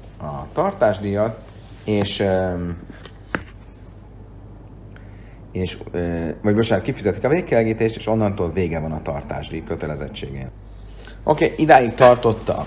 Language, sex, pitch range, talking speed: Hungarian, male, 90-110 Hz, 95 wpm